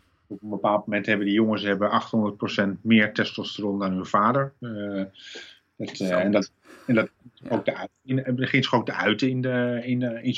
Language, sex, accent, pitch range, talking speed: Dutch, male, Dutch, 100-130 Hz, 170 wpm